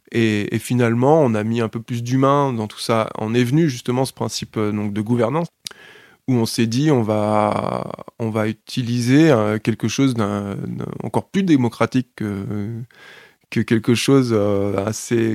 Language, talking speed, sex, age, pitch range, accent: French, 170 wpm, male, 20-39, 110-130 Hz, French